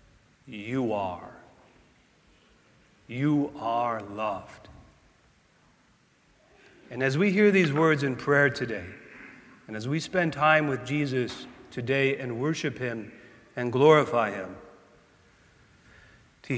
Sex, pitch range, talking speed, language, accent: male, 110-135 Hz, 105 wpm, English, American